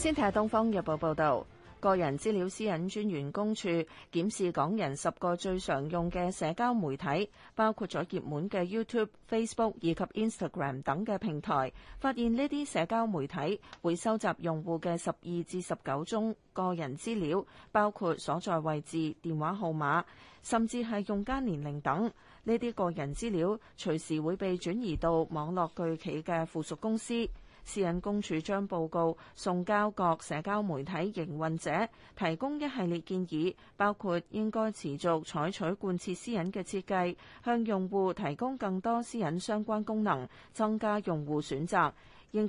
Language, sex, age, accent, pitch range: Chinese, female, 30-49, native, 160-210 Hz